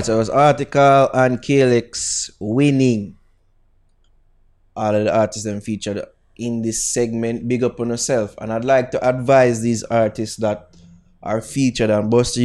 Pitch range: 105-125 Hz